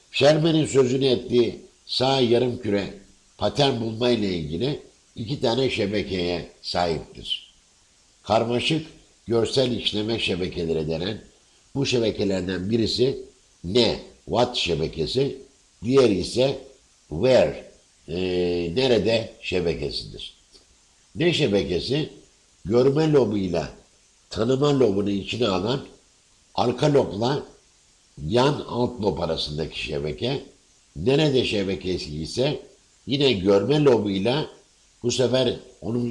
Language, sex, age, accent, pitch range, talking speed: Turkish, male, 60-79, native, 95-130 Hz, 90 wpm